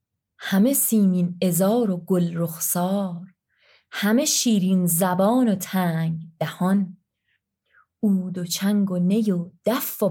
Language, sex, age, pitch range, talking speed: Persian, female, 20-39, 175-210 Hz, 120 wpm